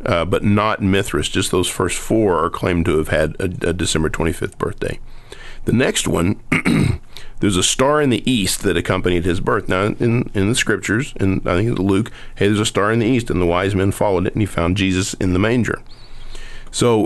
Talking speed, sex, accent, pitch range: 220 wpm, male, American, 90-115 Hz